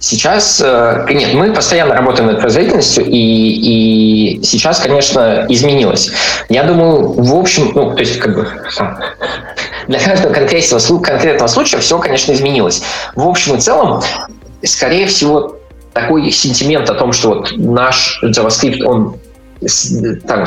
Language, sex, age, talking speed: Russian, male, 20-39, 130 wpm